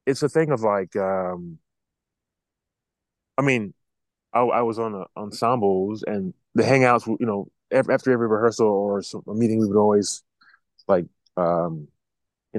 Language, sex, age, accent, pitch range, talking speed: English, male, 20-39, American, 95-115 Hz, 155 wpm